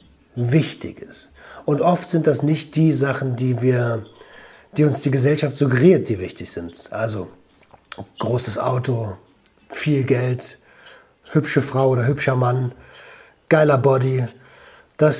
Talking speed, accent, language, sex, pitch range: 125 wpm, German, German, male, 105-160 Hz